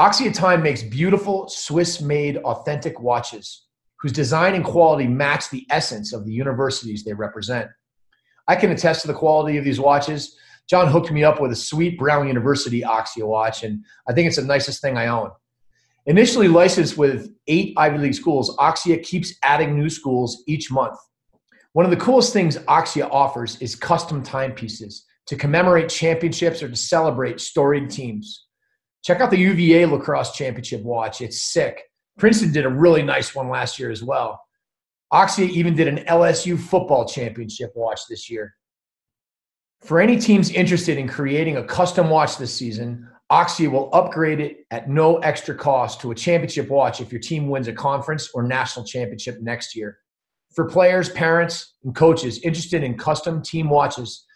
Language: English